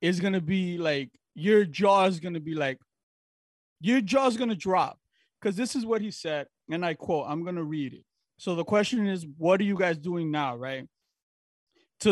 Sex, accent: male, American